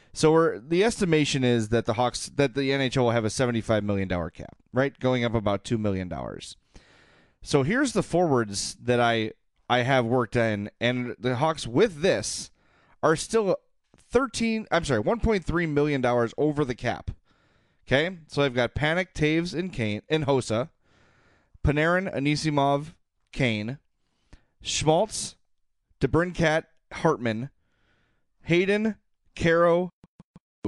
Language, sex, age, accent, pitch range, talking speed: English, male, 30-49, American, 115-155 Hz, 135 wpm